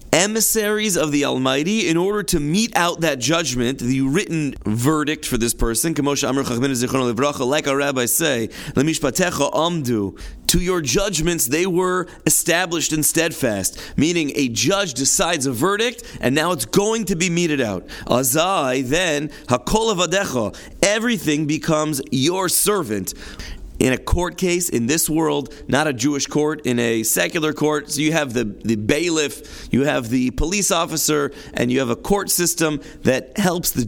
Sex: male